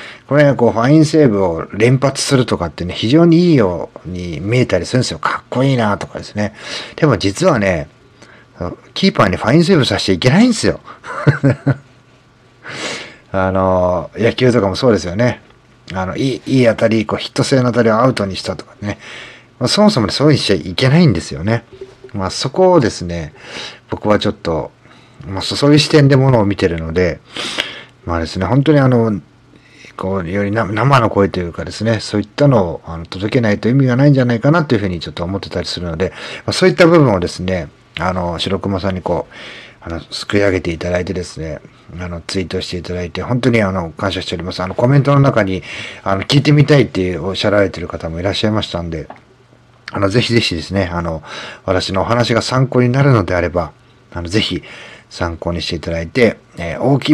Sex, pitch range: male, 90-130 Hz